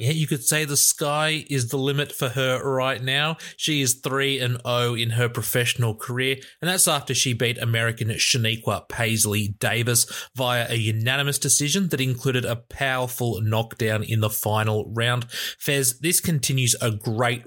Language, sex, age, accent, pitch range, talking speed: English, male, 20-39, Australian, 110-140 Hz, 160 wpm